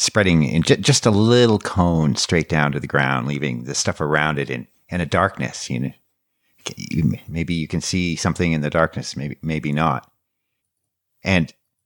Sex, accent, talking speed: male, American, 170 wpm